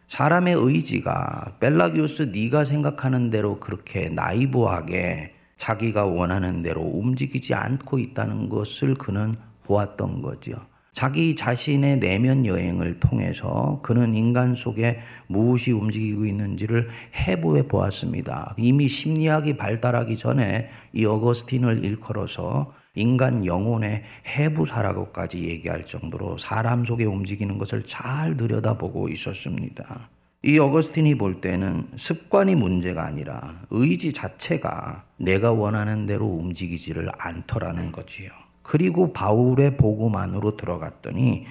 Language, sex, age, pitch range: Korean, male, 40-59, 100-130 Hz